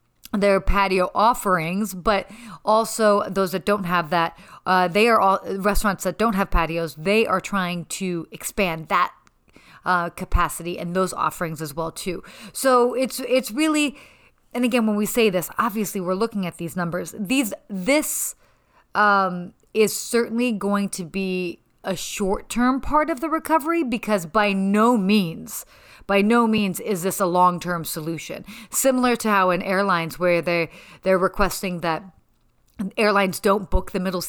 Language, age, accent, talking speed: English, 30-49, American, 155 wpm